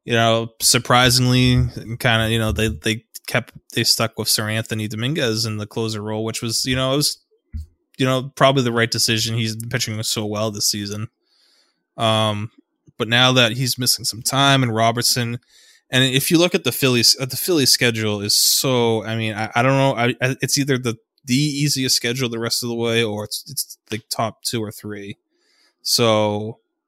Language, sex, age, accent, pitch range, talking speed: English, male, 20-39, American, 110-125 Hz, 200 wpm